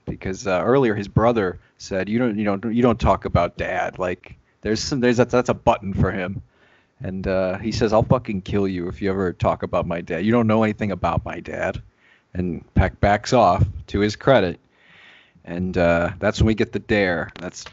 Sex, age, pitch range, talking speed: male, 30-49, 95-120 Hz, 215 wpm